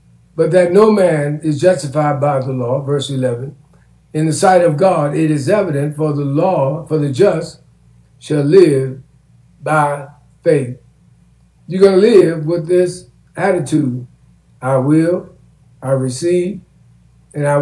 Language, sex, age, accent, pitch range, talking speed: English, male, 60-79, American, 135-175 Hz, 145 wpm